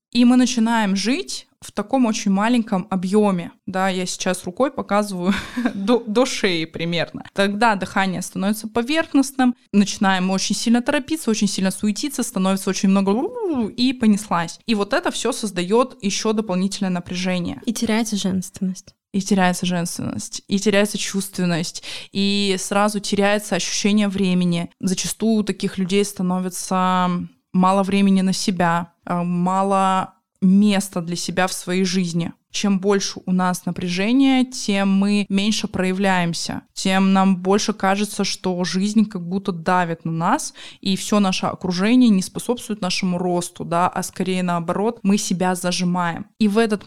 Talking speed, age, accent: 140 wpm, 20-39, native